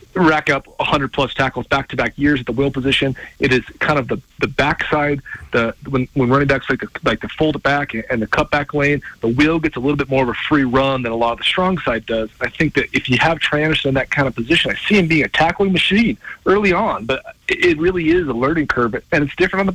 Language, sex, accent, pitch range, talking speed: English, male, American, 120-145 Hz, 260 wpm